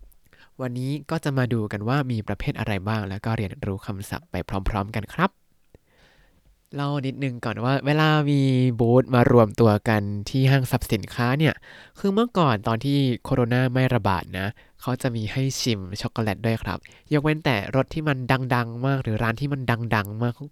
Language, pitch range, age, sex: Thai, 110-145 Hz, 20-39, male